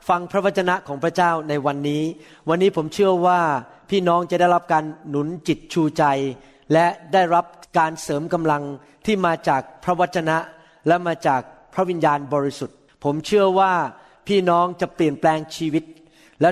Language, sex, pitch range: Thai, male, 155-195 Hz